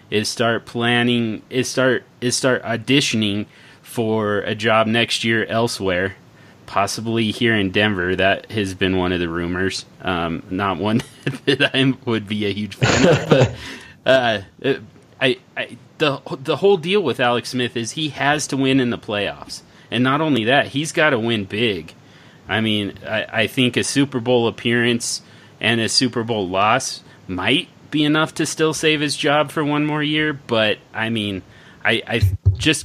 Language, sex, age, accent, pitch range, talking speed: English, male, 30-49, American, 105-130 Hz, 175 wpm